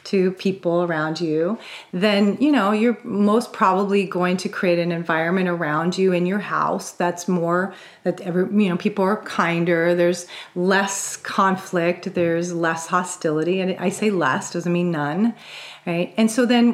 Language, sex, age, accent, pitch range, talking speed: English, female, 40-59, American, 170-200 Hz, 165 wpm